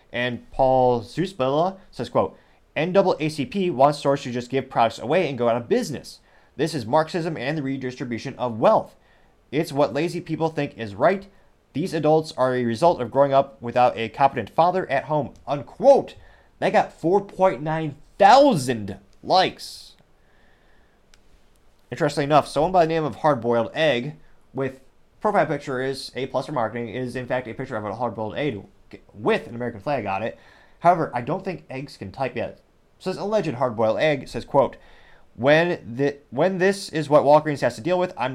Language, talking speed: English, 180 wpm